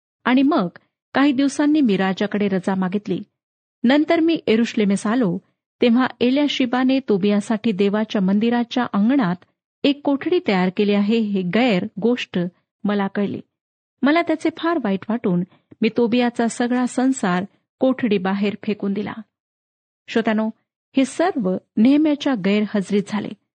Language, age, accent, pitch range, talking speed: Marathi, 40-59, native, 205-260 Hz, 125 wpm